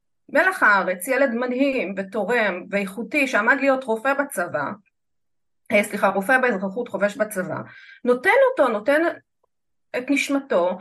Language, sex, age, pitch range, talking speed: Hebrew, female, 30-49, 200-285 Hz, 110 wpm